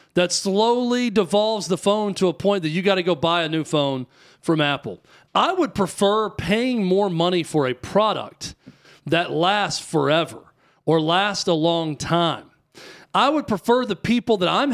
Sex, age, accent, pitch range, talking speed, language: male, 40-59, American, 155-215 Hz, 175 wpm, English